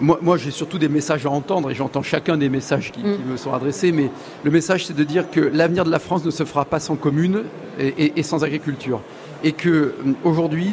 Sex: male